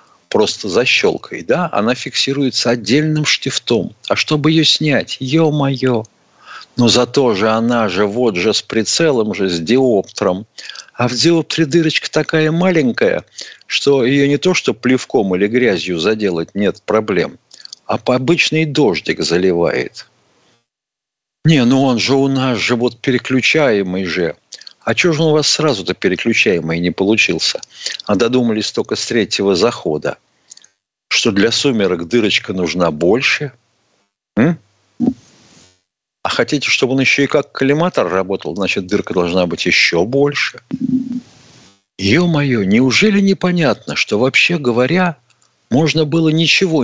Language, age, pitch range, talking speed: Russian, 50-69, 110-155 Hz, 135 wpm